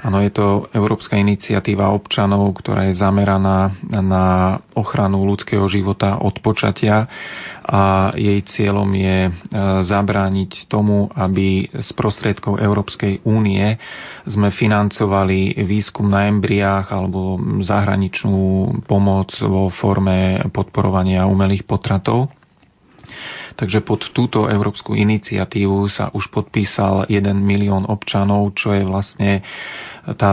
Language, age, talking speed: Slovak, 30-49, 105 wpm